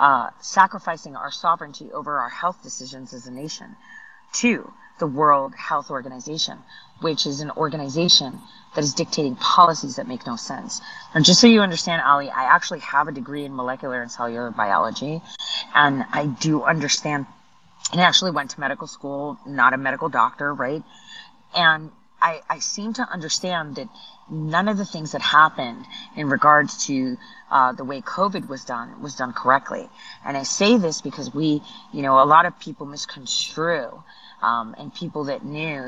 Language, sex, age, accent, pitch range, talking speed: English, female, 30-49, American, 135-175 Hz, 170 wpm